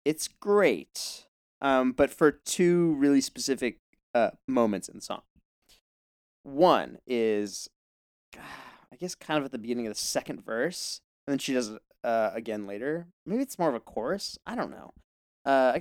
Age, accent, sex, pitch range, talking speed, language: 30-49, American, male, 115-150 Hz, 170 wpm, English